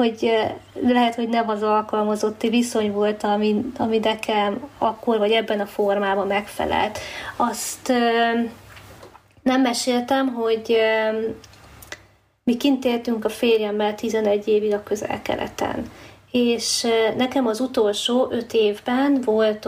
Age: 30-49